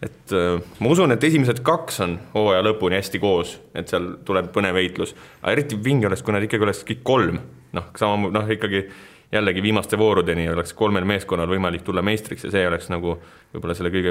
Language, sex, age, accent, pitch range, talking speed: English, male, 30-49, Finnish, 90-110 Hz, 175 wpm